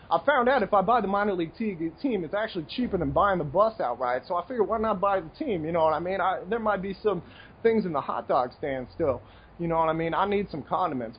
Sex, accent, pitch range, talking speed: male, American, 155-205 Hz, 285 wpm